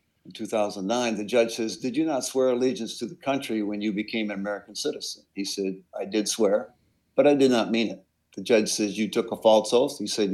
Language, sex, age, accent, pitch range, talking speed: English, male, 50-69, American, 100-120 Hz, 230 wpm